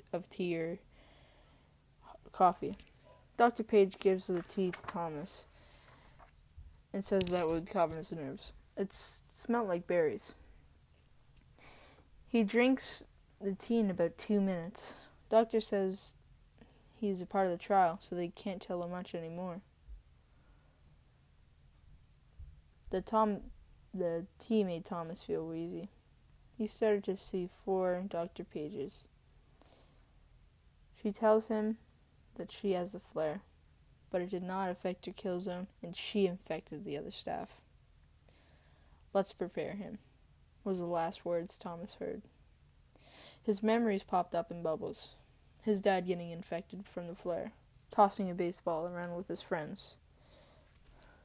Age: 10-29